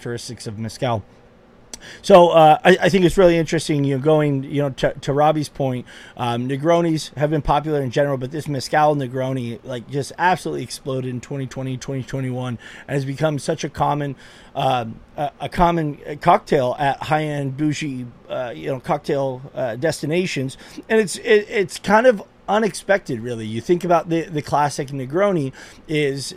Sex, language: male, English